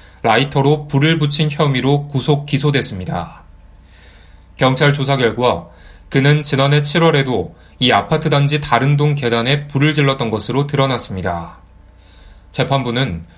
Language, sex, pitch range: Korean, male, 100-145 Hz